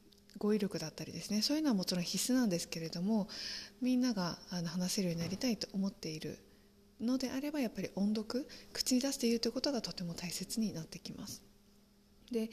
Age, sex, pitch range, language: 20-39, female, 175-240 Hz, Japanese